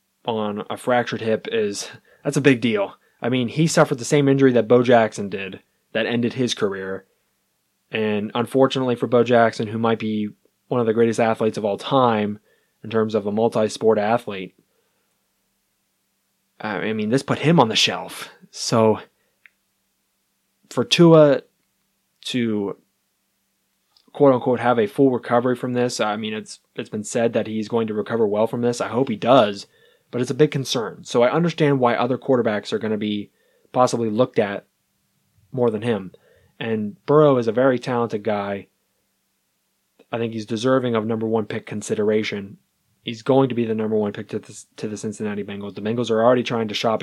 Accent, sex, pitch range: American, male, 110-130 Hz